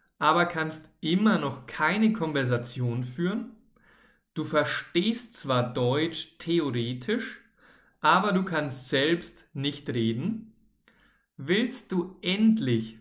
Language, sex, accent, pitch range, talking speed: German, male, German, 130-180 Hz, 95 wpm